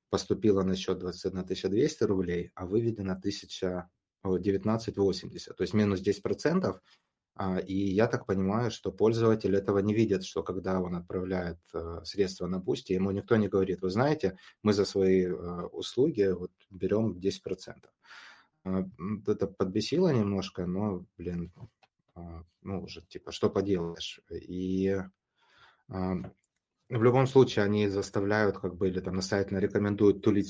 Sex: male